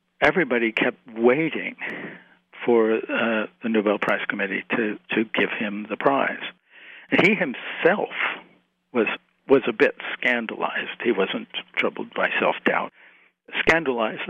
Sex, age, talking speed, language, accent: male, 60-79, 120 wpm, English, American